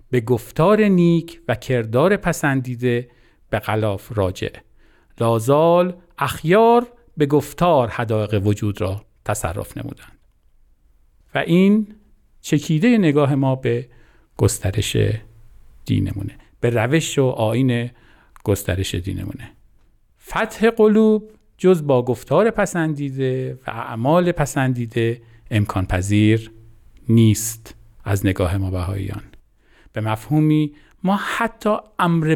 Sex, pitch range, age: male, 110-170 Hz, 50-69